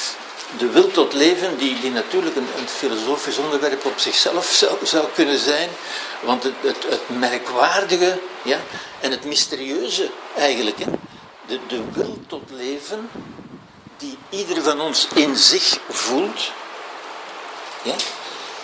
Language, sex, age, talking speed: Dutch, male, 60-79, 130 wpm